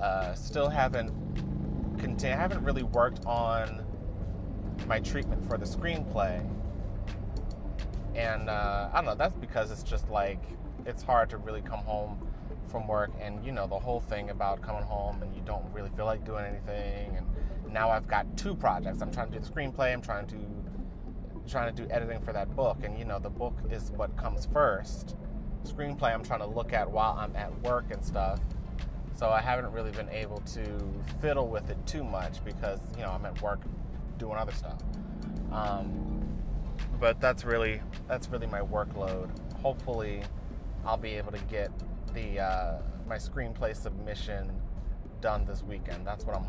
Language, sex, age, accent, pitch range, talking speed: English, male, 30-49, American, 95-110 Hz, 175 wpm